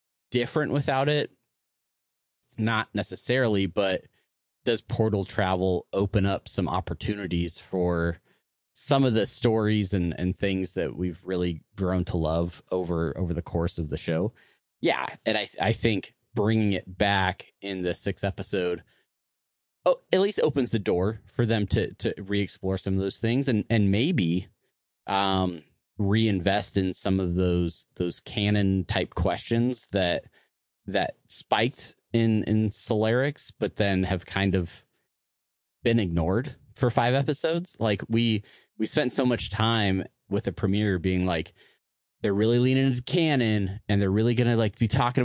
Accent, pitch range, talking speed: American, 90-115 Hz, 155 wpm